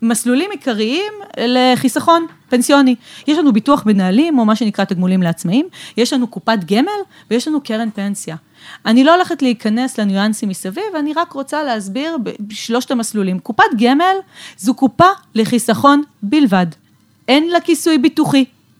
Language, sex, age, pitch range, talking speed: Hebrew, female, 30-49, 205-300 Hz, 135 wpm